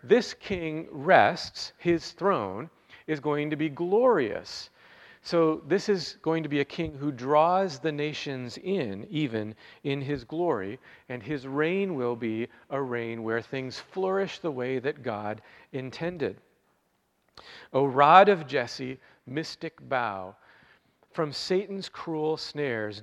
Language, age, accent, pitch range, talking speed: English, 40-59, American, 120-165 Hz, 135 wpm